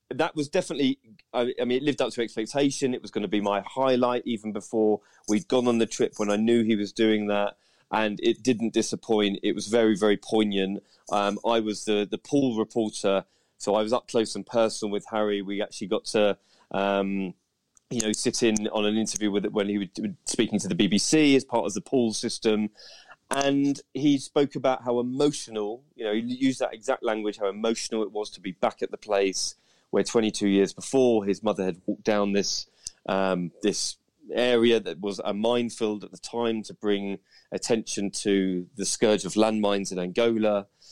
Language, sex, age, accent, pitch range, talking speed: English, male, 30-49, British, 100-120 Hz, 200 wpm